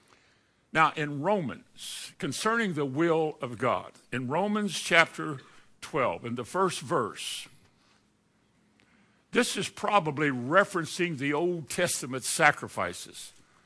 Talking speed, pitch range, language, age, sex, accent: 105 wpm, 135-180 Hz, English, 60-79, male, American